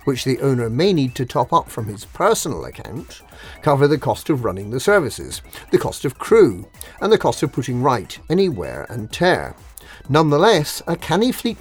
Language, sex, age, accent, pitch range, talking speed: English, male, 50-69, British, 115-160 Hz, 185 wpm